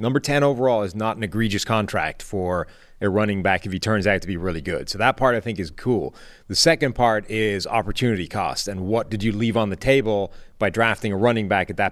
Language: English